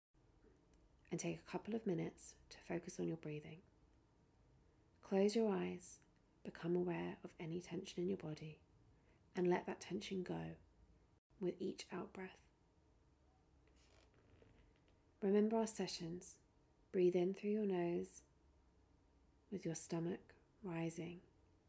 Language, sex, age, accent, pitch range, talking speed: English, female, 30-49, British, 160-190 Hz, 120 wpm